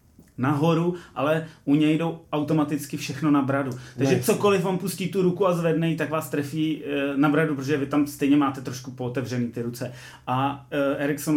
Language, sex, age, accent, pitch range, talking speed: Czech, male, 30-49, native, 130-150 Hz, 180 wpm